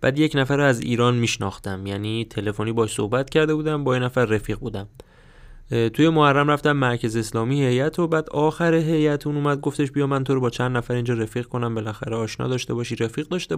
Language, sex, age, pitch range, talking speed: Persian, male, 20-39, 115-135 Hz, 210 wpm